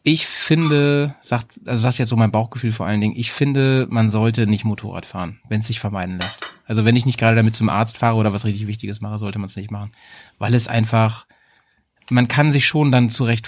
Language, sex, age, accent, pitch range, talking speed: German, male, 30-49, German, 110-120 Hz, 235 wpm